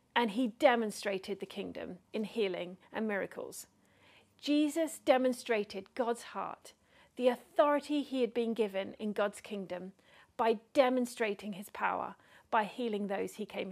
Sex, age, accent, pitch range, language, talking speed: female, 40-59, British, 210-270 Hz, English, 135 wpm